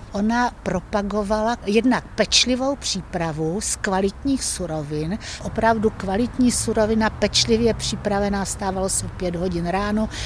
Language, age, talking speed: Czech, 60-79, 110 wpm